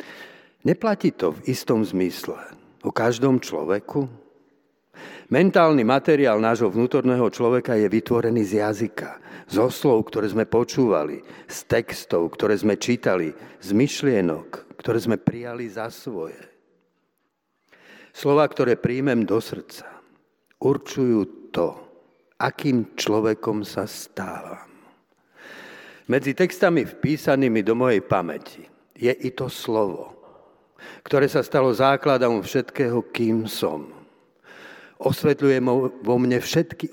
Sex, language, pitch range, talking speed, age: male, Slovak, 115-140 Hz, 105 wpm, 50-69